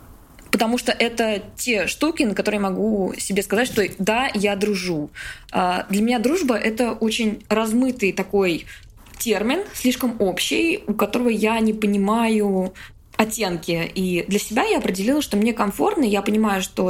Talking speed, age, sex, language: 150 wpm, 20-39, female, Russian